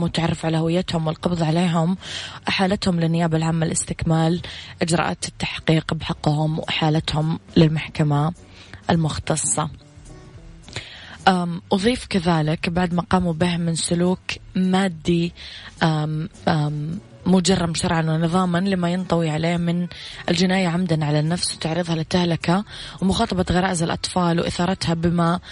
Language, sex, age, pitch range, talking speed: English, female, 20-39, 160-180 Hz, 105 wpm